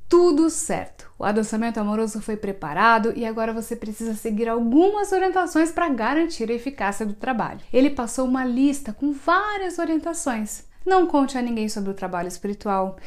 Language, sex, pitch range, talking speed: Portuguese, female, 215-285 Hz, 160 wpm